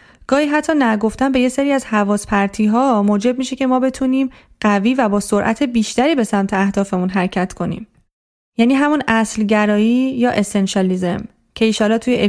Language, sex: Persian, female